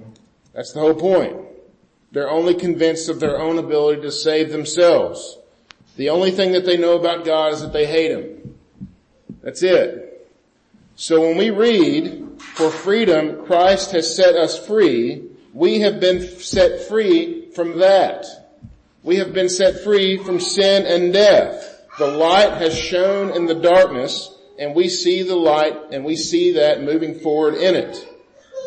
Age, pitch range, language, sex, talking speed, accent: 50-69, 165-210 Hz, English, male, 160 wpm, American